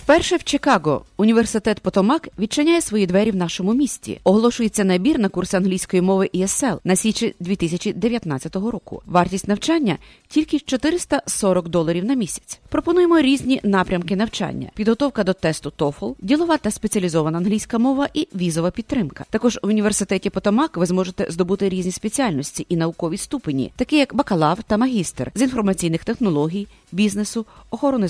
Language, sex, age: English, female, 30-49